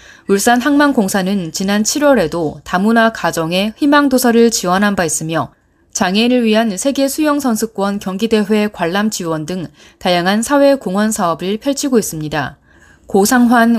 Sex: female